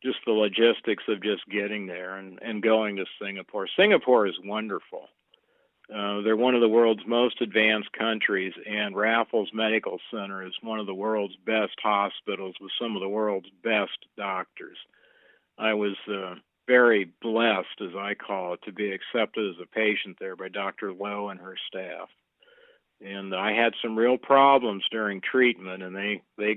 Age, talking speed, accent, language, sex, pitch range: 50-69, 170 wpm, American, English, male, 100-115 Hz